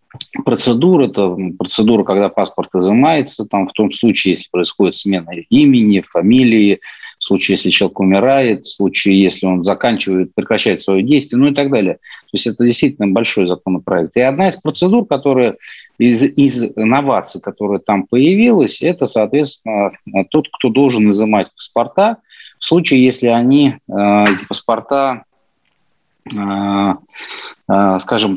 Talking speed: 135 wpm